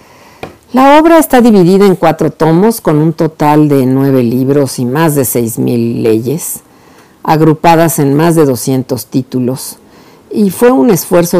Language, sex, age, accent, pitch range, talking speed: Spanish, female, 50-69, Mexican, 140-175 Hz, 155 wpm